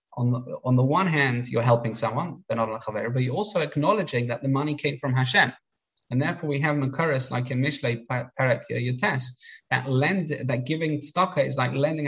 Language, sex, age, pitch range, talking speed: English, male, 20-39, 120-150 Hz, 185 wpm